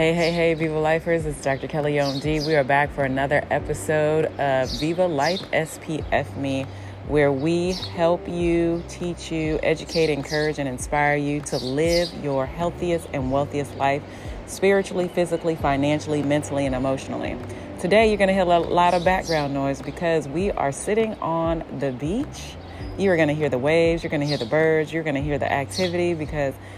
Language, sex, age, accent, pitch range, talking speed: English, female, 30-49, American, 130-155 Hz, 180 wpm